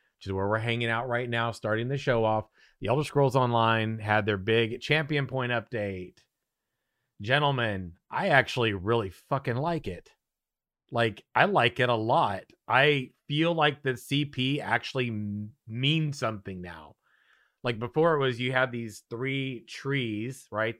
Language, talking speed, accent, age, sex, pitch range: English, 155 wpm, American, 30-49, male, 105-130 Hz